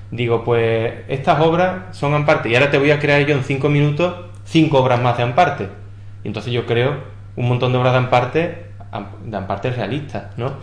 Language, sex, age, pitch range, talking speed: English, male, 20-39, 110-140 Hz, 200 wpm